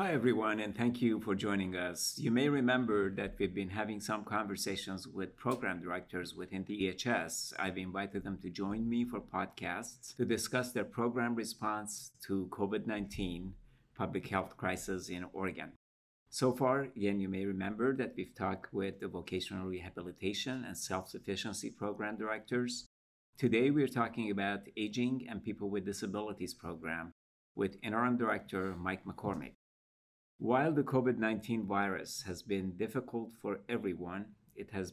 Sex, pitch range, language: male, 95-110 Hz, English